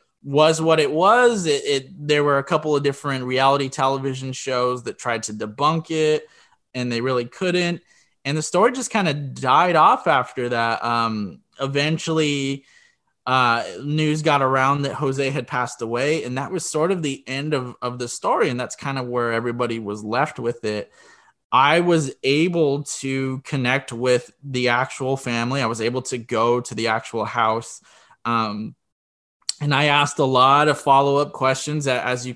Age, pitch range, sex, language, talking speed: 20-39, 120-150 Hz, male, English, 175 wpm